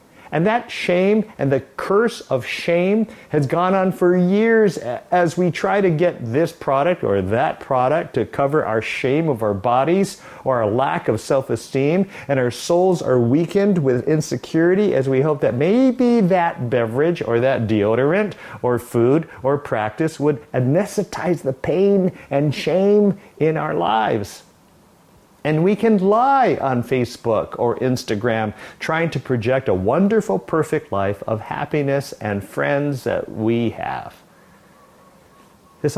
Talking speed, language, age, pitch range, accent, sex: 145 wpm, English, 50-69, 120-175 Hz, American, male